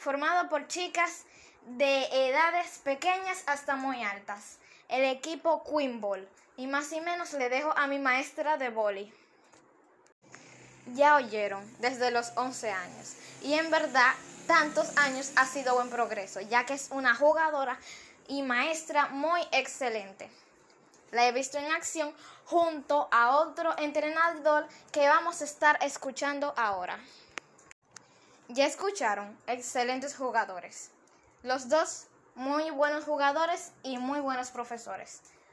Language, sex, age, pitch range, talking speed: Spanish, female, 10-29, 240-300 Hz, 125 wpm